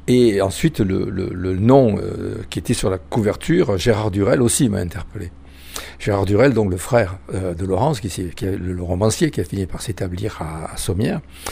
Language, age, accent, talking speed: French, 60-79, French, 195 wpm